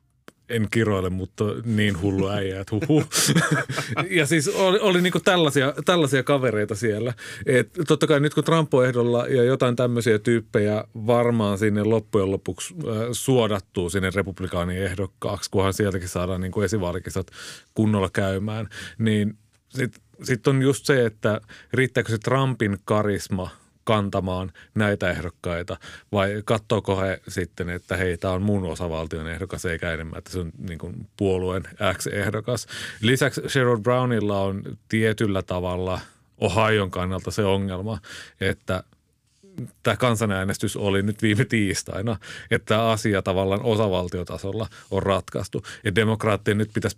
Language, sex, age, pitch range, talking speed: Finnish, male, 30-49, 95-120 Hz, 135 wpm